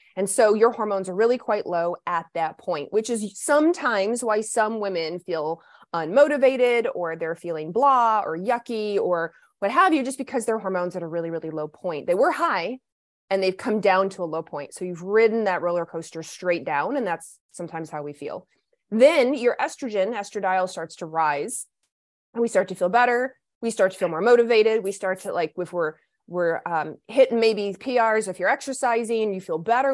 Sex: female